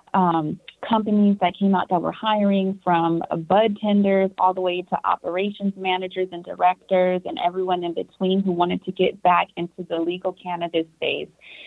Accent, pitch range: American, 165-195 Hz